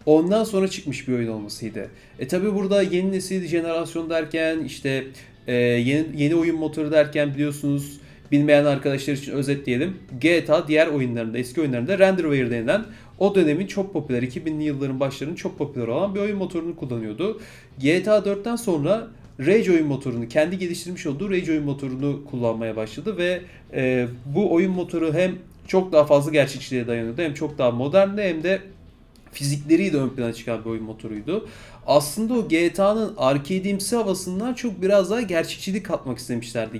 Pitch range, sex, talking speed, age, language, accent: 130-185 Hz, male, 160 wpm, 30-49, Turkish, native